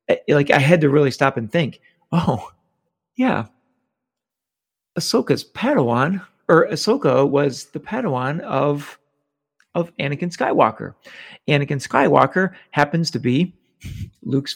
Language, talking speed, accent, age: English, 110 wpm, American, 40-59